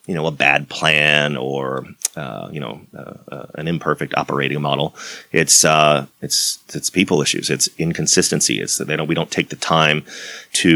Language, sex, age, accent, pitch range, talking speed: English, male, 30-49, American, 75-85 Hz, 175 wpm